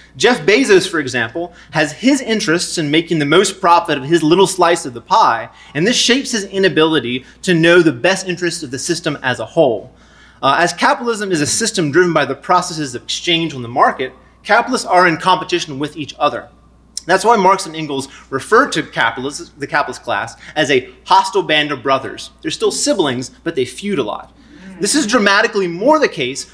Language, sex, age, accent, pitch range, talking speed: English, male, 30-49, American, 150-200 Hz, 200 wpm